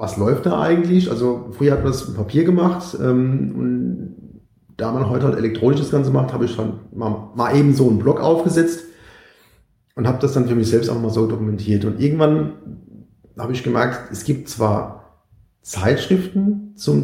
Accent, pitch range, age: German, 110-140 Hz, 40-59